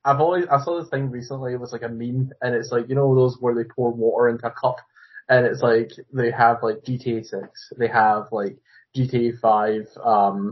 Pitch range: 115-130 Hz